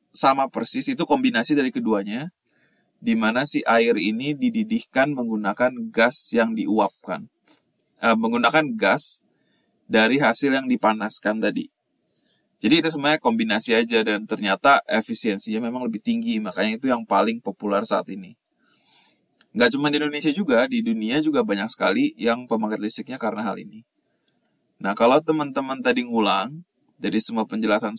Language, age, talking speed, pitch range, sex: Indonesian, 20-39, 140 wpm, 115-165 Hz, male